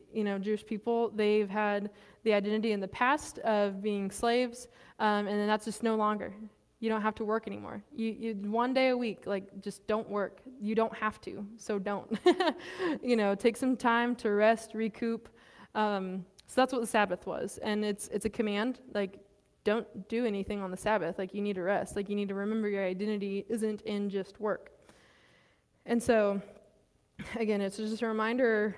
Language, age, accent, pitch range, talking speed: English, 20-39, American, 205-230 Hz, 195 wpm